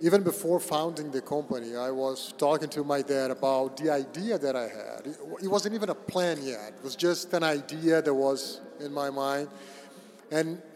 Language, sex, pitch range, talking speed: Dutch, male, 145-175 Hz, 190 wpm